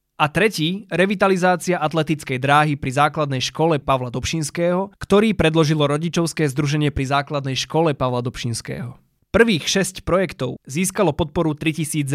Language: Slovak